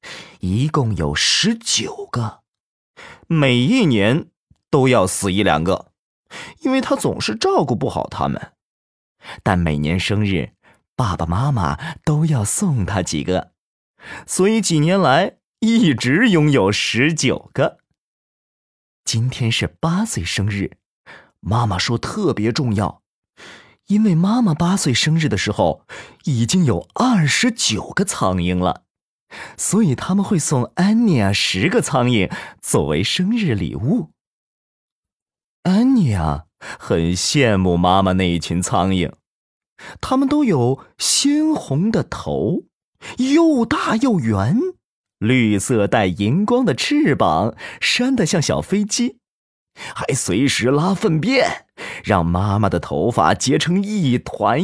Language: Chinese